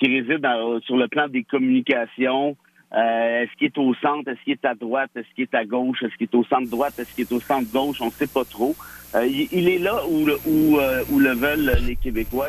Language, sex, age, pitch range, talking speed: French, male, 50-69, 120-150 Hz, 225 wpm